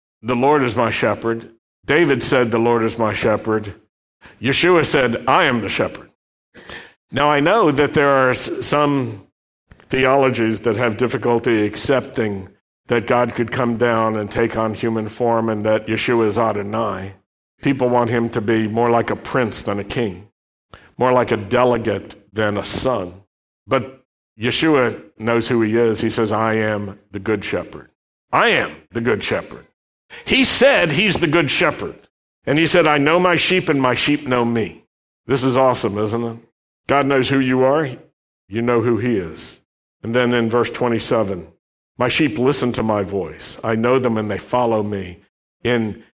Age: 60-79